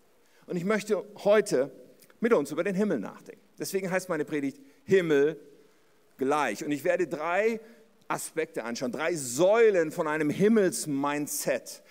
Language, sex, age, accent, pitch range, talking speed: German, male, 50-69, German, 170-230 Hz, 135 wpm